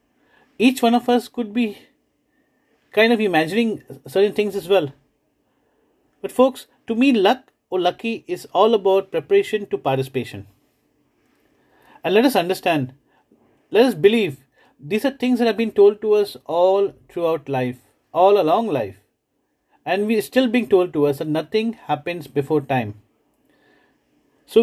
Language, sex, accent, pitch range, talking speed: English, male, Indian, 155-230 Hz, 150 wpm